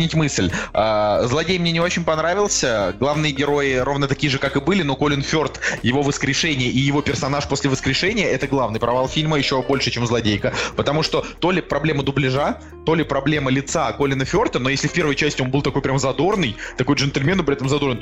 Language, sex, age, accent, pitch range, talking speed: Russian, male, 20-39, native, 130-155 Hz, 200 wpm